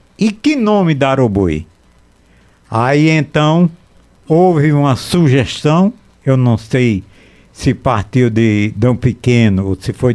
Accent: Brazilian